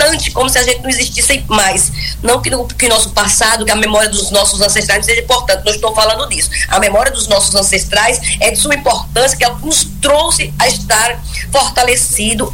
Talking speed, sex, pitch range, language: 195 wpm, female, 190-255 Hz, Portuguese